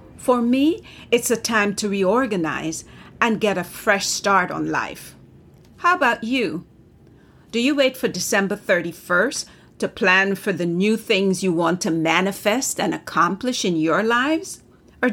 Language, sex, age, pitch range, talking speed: English, female, 50-69, 175-235 Hz, 155 wpm